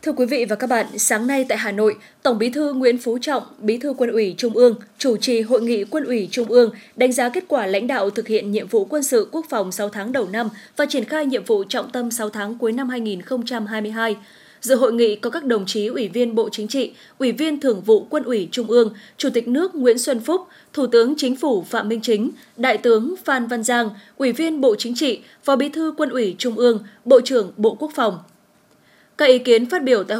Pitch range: 220-270 Hz